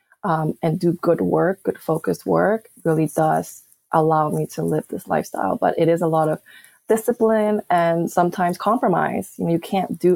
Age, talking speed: 20-39, 185 wpm